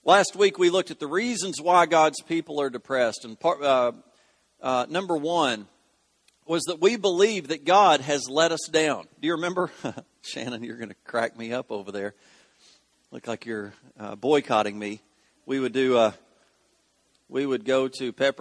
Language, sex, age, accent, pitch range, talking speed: English, male, 40-59, American, 115-190 Hz, 180 wpm